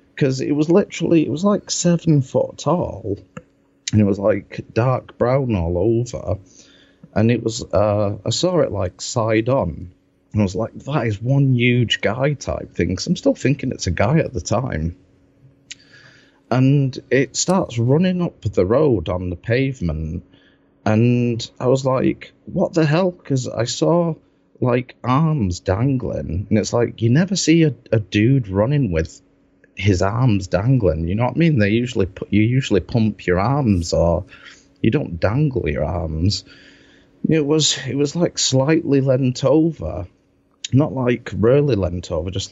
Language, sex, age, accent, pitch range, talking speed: English, male, 30-49, British, 95-140 Hz, 170 wpm